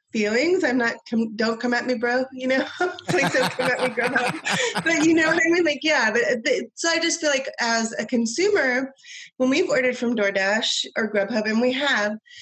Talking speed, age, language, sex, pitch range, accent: 225 wpm, 20-39, English, female, 200-260 Hz, American